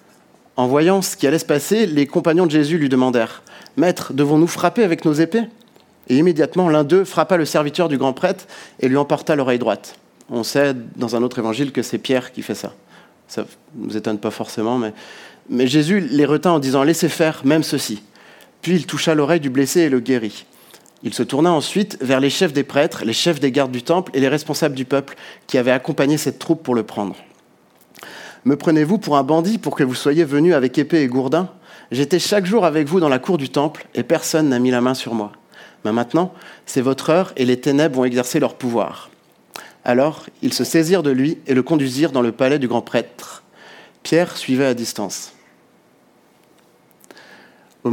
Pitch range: 125-165 Hz